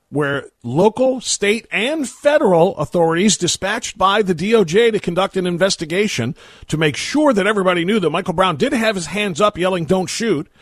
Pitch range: 130-205 Hz